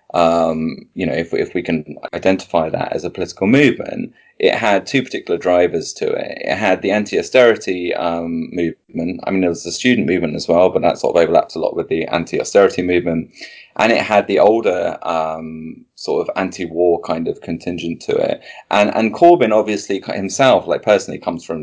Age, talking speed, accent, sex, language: 20-39, 195 wpm, British, male, English